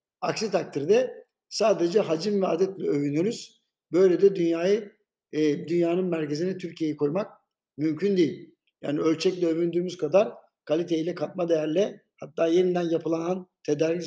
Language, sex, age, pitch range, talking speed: Turkish, male, 60-79, 155-200 Hz, 120 wpm